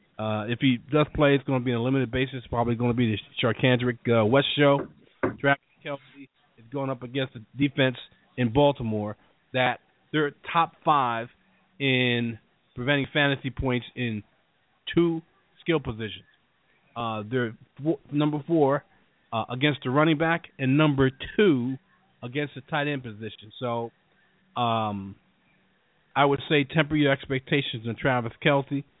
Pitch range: 115-145 Hz